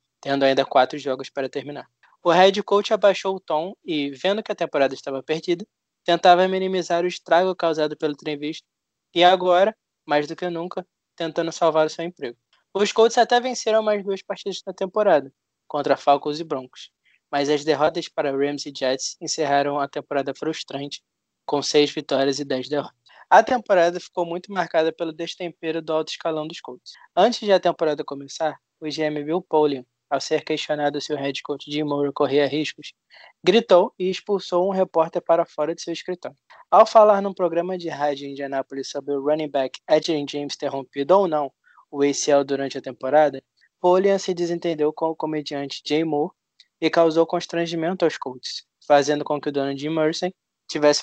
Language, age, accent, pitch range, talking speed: Portuguese, 20-39, Brazilian, 145-180 Hz, 180 wpm